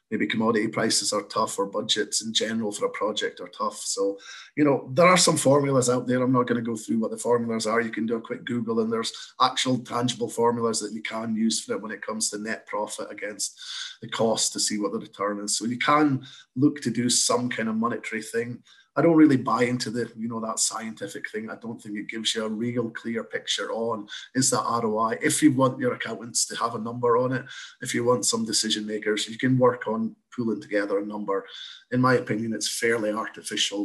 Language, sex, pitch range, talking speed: English, male, 115-160 Hz, 235 wpm